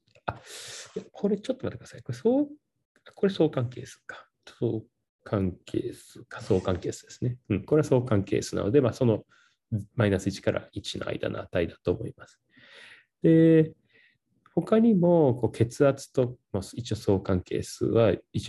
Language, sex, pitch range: Japanese, male, 110-160 Hz